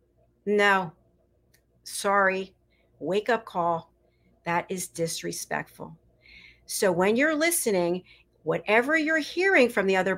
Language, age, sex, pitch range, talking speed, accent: English, 40-59, female, 170-225 Hz, 105 wpm, American